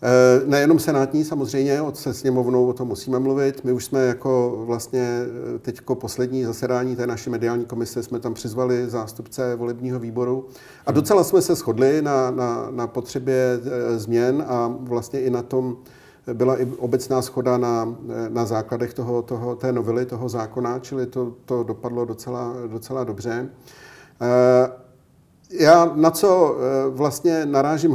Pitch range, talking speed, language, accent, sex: 120-135 Hz, 150 wpm, Czech, native, male